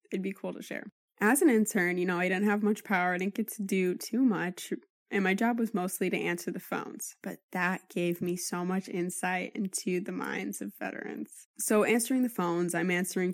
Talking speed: 220 wpm